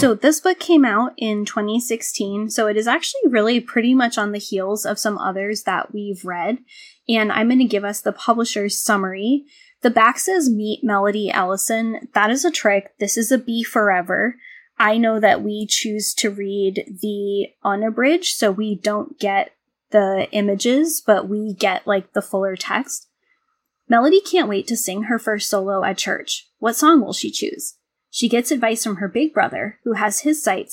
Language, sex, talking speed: English, female, 185 wpm